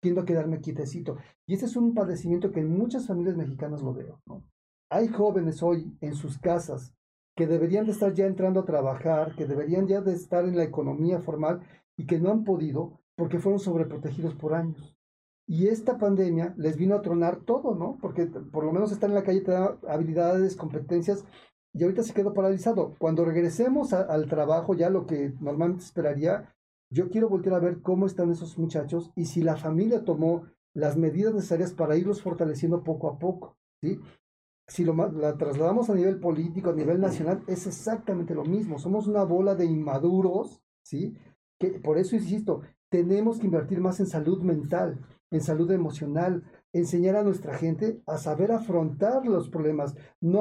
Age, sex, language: 40-59, male, Spanish